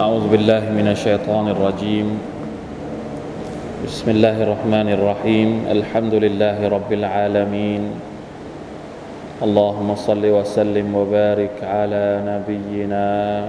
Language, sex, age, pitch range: Thai, male, 20-39, 105-110 Hz